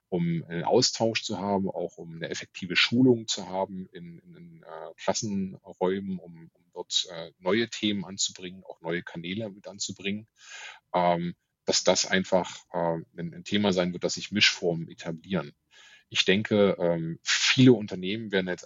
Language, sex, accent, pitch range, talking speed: German, male, German, 90-120 Hz, 160 wpm